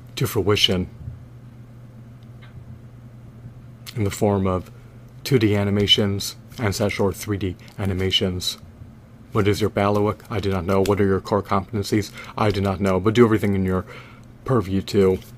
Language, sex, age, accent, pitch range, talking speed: English, male, 30-49, American, 100-120 Hz, 140 wpm